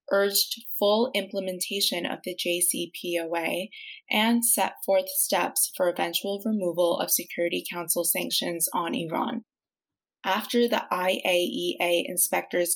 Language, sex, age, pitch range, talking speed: English, female, 20-39, 175-225 Hz, 110 wpm